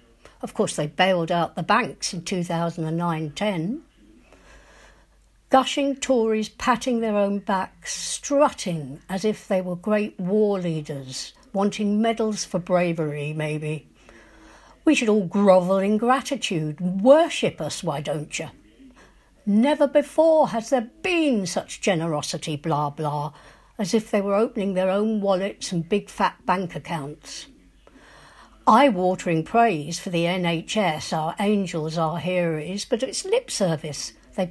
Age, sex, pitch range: 60-79, female, 170-225 Hz